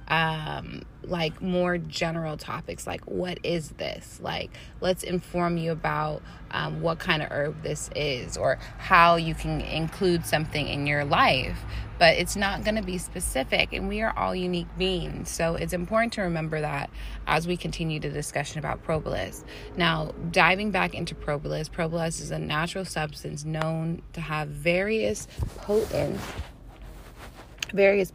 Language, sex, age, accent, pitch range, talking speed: English, female, 20-39, American, 155-195 Hz, 155 wpm